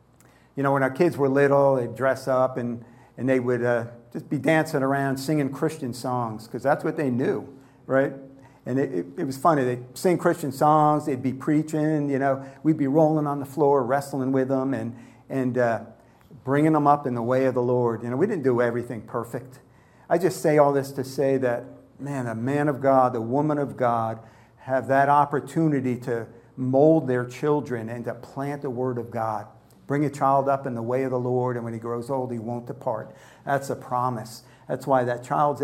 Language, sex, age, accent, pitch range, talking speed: English, male, 50-69, American, 125-145 Hz, 210 wpm